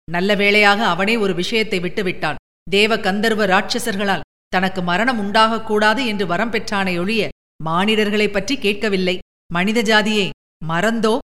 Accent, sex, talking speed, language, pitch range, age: native, female, 115 wpm, Tamil, 180-225 Hz, 50-69